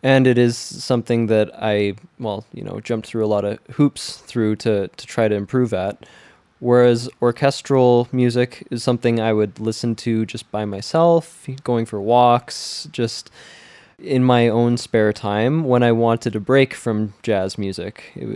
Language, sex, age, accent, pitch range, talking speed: English, male, 20-39, American, 110-130 Hz, 170 wpm